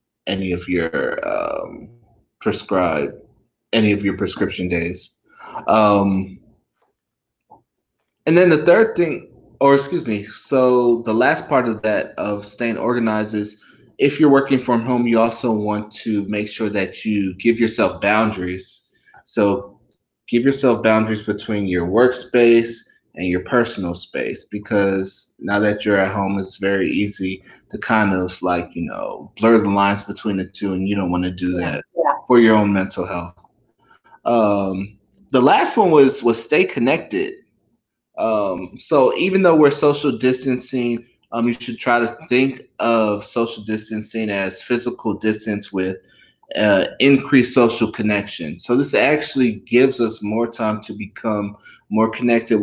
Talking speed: 150 wpm